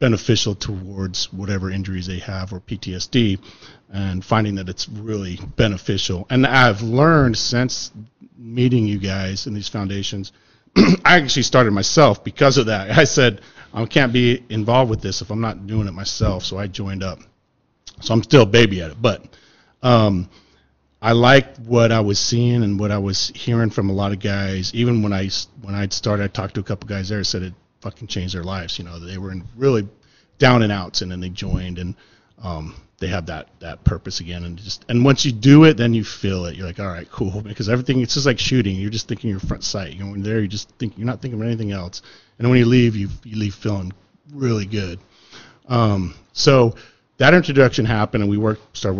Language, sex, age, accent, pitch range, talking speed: English, male, 40-59, American, 95-120 Hz, 215 wpm